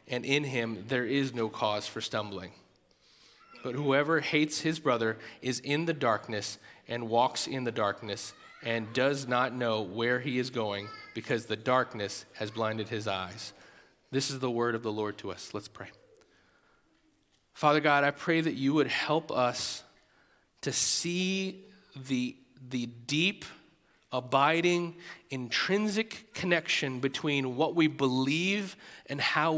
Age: 30-49